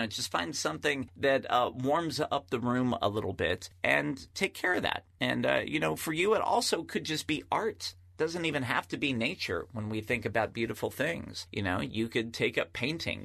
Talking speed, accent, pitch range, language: 220 wpm, American, 105-135 Hz, English